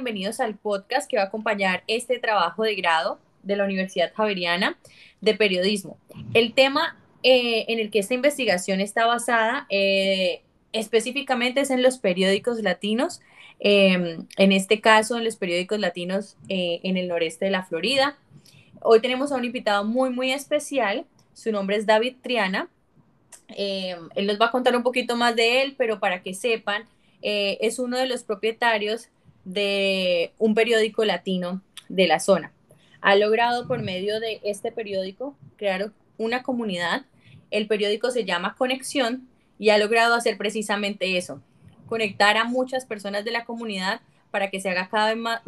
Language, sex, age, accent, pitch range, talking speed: Spanish, female, 20-39, Colombian, 195-235 Hz, 165 wpm